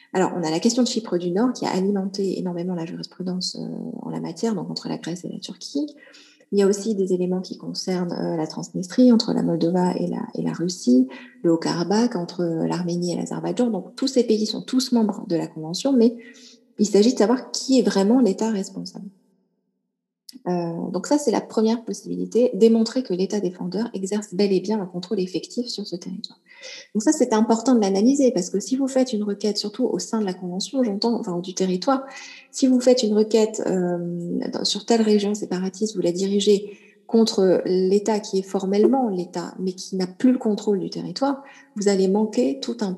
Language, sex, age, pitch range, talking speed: French, female, 30-49, 185-240 Hz, 200 wpm